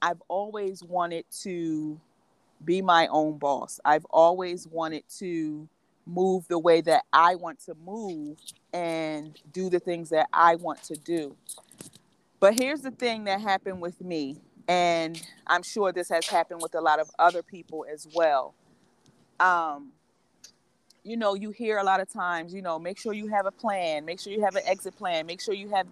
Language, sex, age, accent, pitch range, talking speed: English, female, 40-59, American, 165-200 Hz, 185 wpm